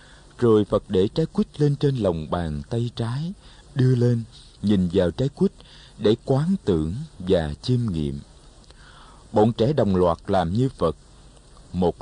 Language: Vietnamese